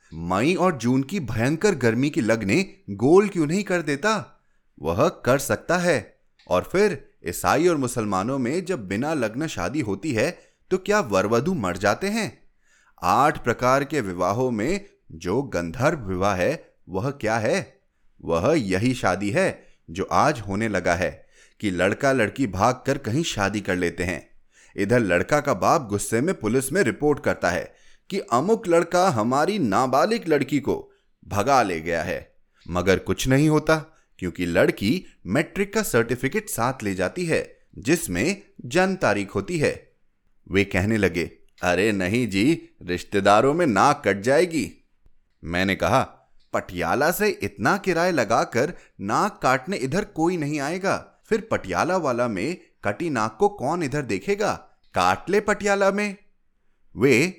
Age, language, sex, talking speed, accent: 30-49, Hindi, male, 150 wpm, native